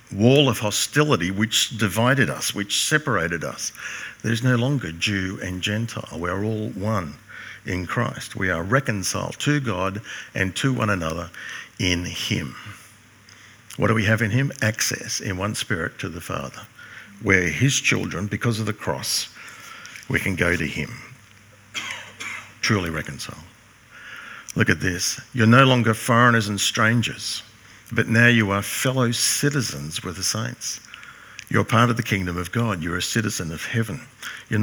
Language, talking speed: English, 155 wpm